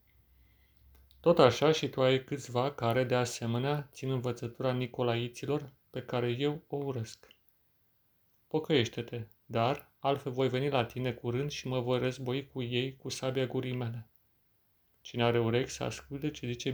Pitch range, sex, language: 115-135 Hz, male, Romanian